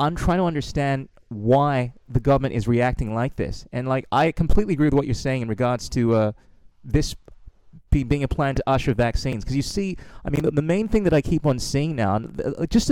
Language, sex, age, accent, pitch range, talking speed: English, male, 30-49, American, 120-145 Hz, 220 wpm